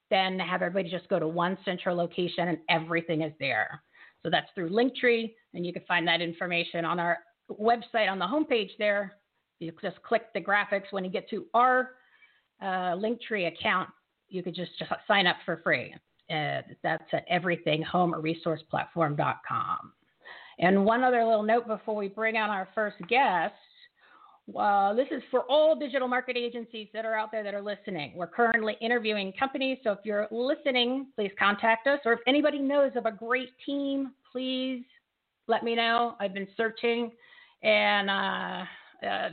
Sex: female